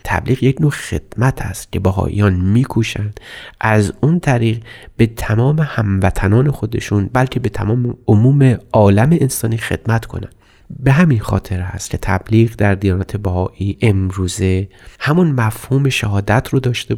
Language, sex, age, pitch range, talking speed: Persian, male, 30-49, 100-120 Hz, 135 wpm